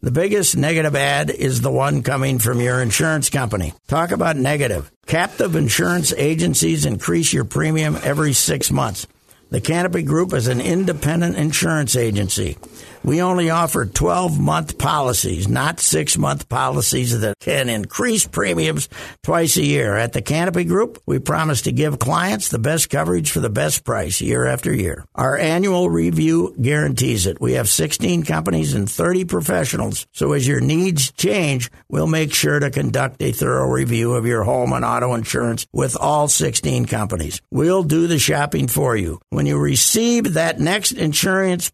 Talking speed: 165 wpm